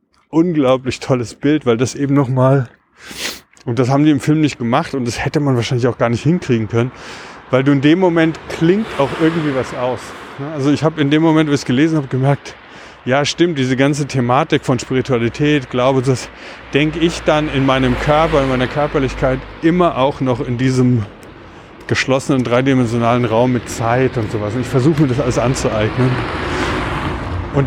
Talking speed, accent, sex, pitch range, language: 185 wpm, German, male, 120-150 Hz, German